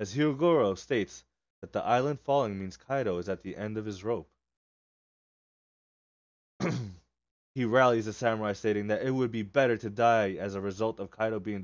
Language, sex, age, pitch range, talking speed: English, male, 20-39, 95-125 Hz, 175 wpm